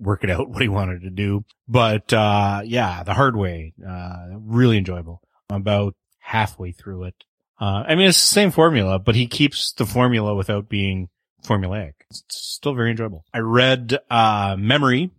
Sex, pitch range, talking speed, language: male, 90-110 Hz, 180 wpm, English